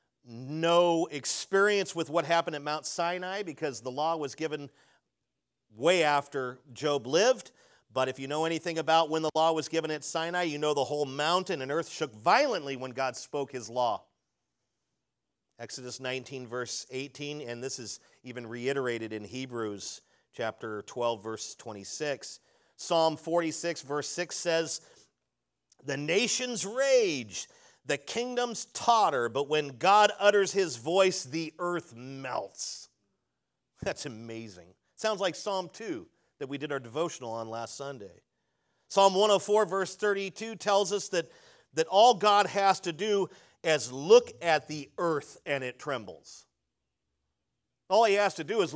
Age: 40-59